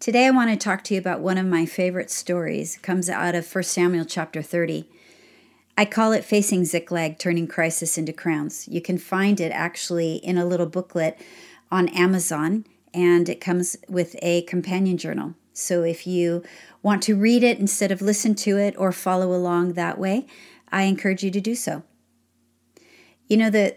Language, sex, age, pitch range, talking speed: English, female, 40-59, 175-210 Hz, 185 wpm